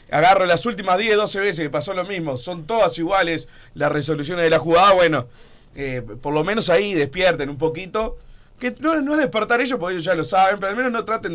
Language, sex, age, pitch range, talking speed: Spanish, male, 30-49, 145-195 Hz, 225 wpm